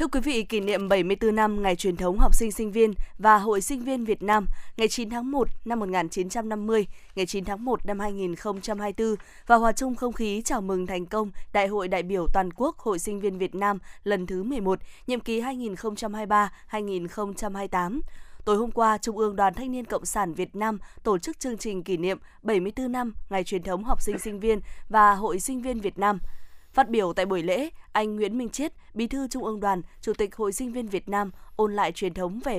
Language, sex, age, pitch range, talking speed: Vietnamese, female, 20-39, 195-230 Hz, 215 wpm